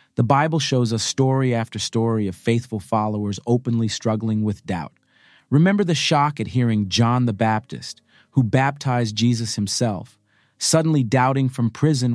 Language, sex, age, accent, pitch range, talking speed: English, male, 40-59, American, 100-125 Hz, 150 wpm